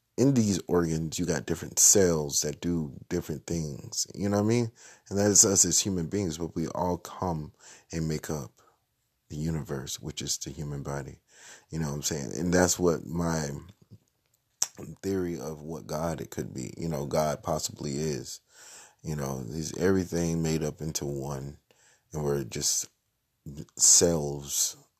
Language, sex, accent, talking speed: English, male, American, 170 wpm